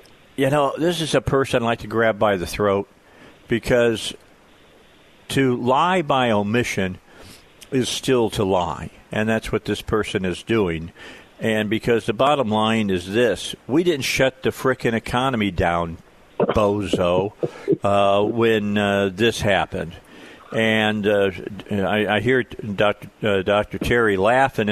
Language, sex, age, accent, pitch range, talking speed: English, male, 50-69, American, 95-130 Hz, 145 wpm